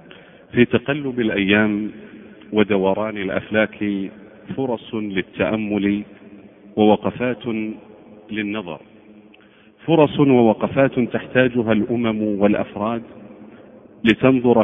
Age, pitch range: 50-69, 105-130 Hz